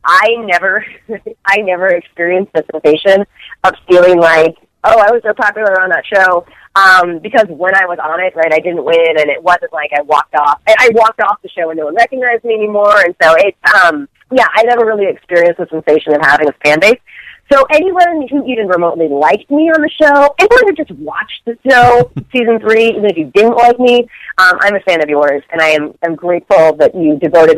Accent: American